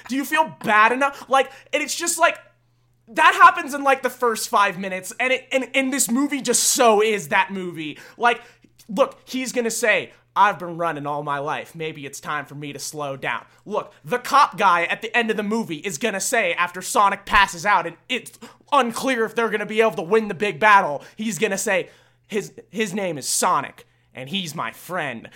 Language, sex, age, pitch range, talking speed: English, male, 20-39, 175-255 Hz, 220 wpm